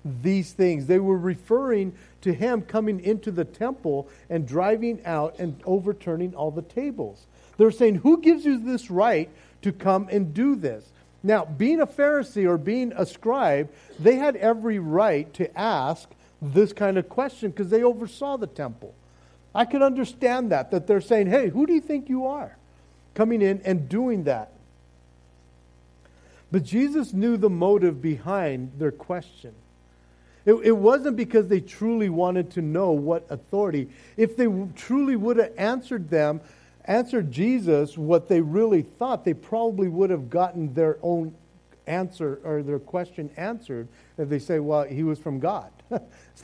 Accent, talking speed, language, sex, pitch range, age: American, 160 wpm, English, male, 145-220 Hz, 50-69